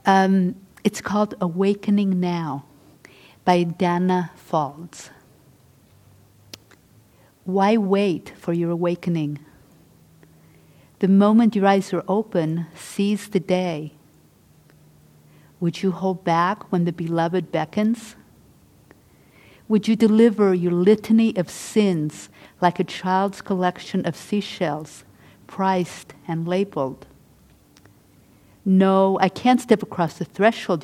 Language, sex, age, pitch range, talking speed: English, female, 50-69, 160-210 Hz, 105 wpm